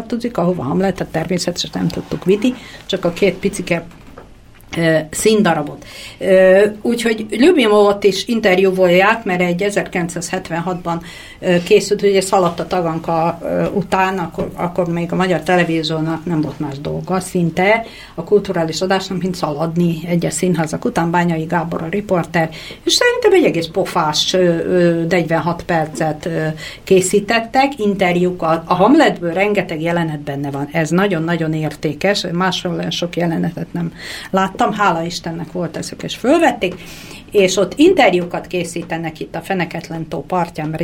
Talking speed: 130 wpm